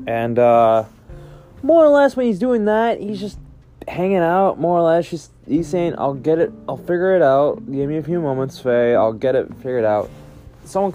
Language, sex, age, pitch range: English, male, 20-39, 120-175 Hz